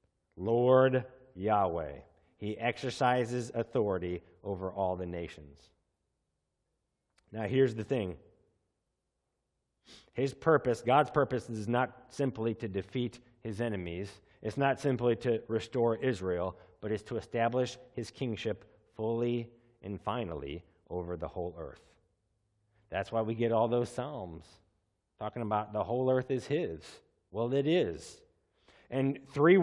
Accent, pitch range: American, 95-125 Hz